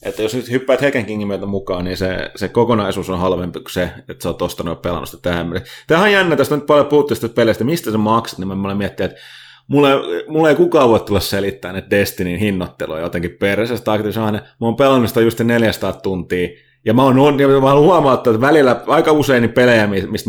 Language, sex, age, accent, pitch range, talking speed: Finnish, male, 30-49, native, 95-125 Hz, 205 wpm